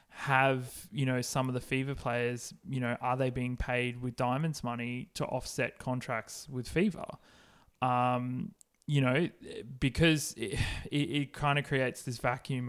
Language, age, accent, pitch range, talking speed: English, 20-39, Australian, 125-145 Hz, 160 wpm